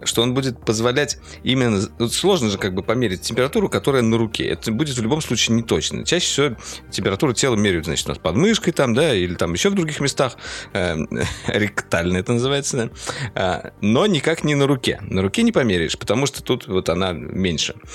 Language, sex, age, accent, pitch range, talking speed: Russian, male, 50-69, native, 95-130 Hz, 195 wpm